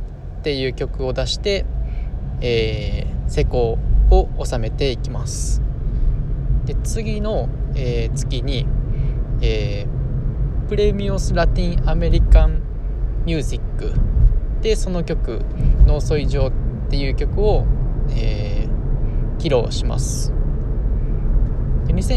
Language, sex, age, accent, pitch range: Japanese, male, 20-39, native, 120-130 Hz